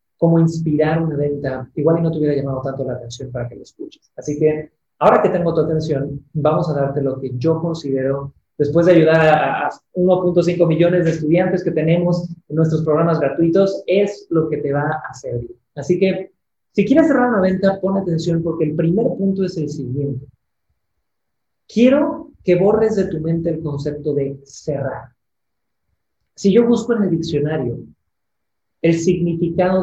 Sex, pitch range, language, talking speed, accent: male, 140-175 Hz, Spanish, 175 wpm, Mexican